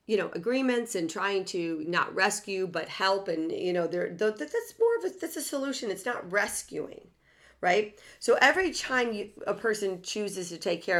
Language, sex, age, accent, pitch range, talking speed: English, female, 40-59, American, 160-215 Hz, 195 wpm